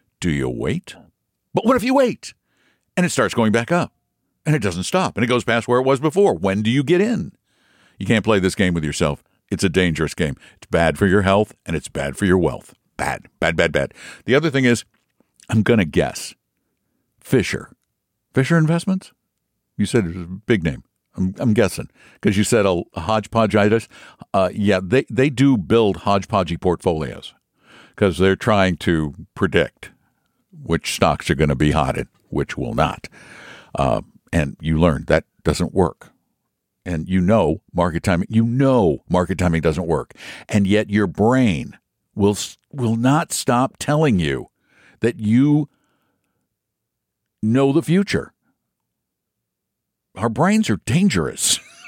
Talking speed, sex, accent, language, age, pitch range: 165 wpm, male, American, English, 60-79, 90-125 Hz